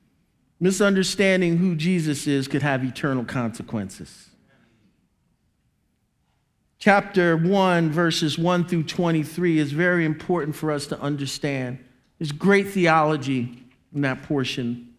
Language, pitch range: English, 160-255 Hz